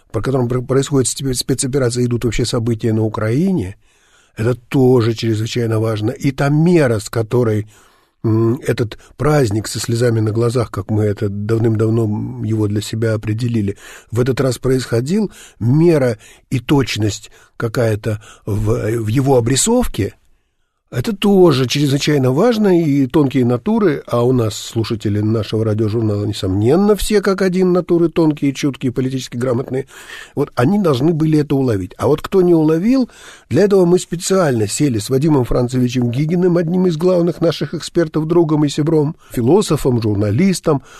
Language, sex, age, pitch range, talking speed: Russian, male, 50-69, 110-155 Hz, 140 wpm